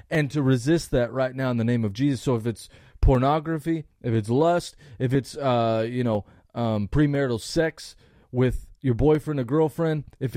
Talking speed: 185 wpm